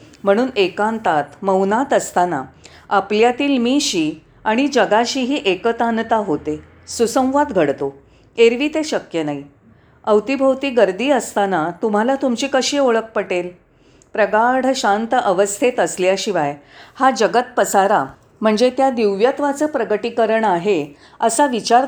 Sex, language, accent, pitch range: female, Marathi, native, 180-250 Hz